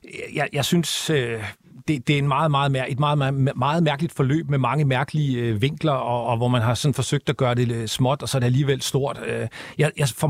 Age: 40-59